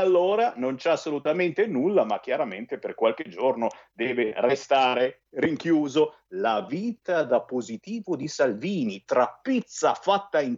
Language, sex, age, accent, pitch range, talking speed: Italian, male, 50-69, native, 160-240 Hz, 130 wpm